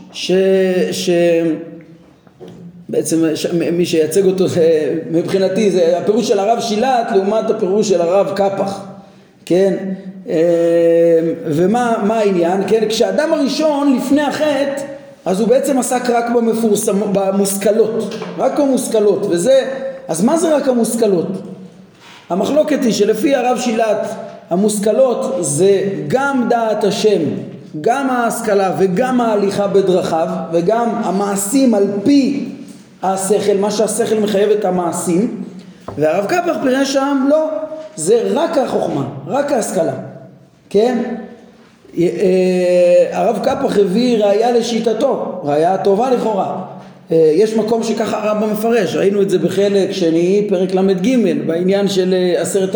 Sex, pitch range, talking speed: male, 185-235 Hz, 110 wpm